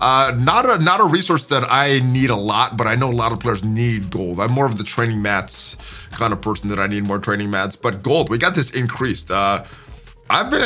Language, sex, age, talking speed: English, male, 30-49, 250 wpm